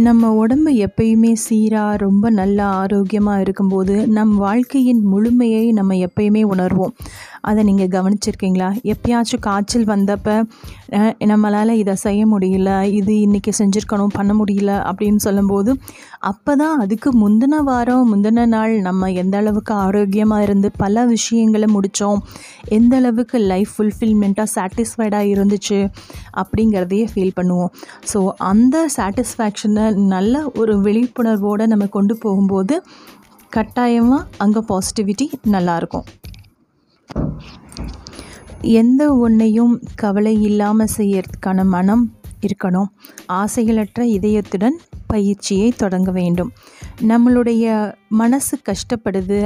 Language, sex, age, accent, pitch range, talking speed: Tamil, female, 30-49, native, 200-230 Hz, 100 wpm